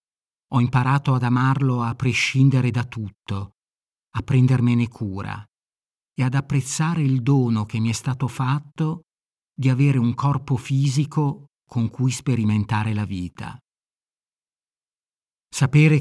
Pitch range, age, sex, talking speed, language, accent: 115-135 Hz, 50-69, male, 120 wpm, Italian, native